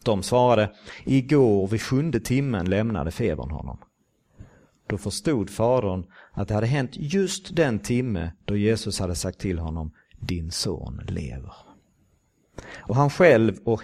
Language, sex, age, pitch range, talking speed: Swedish, male, 50-69, 95-125 Hz, 140 wpm